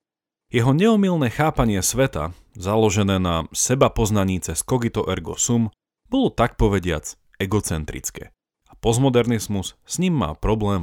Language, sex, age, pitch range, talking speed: Slovak, male, 40-59, 85-125 Hz, 110 wpm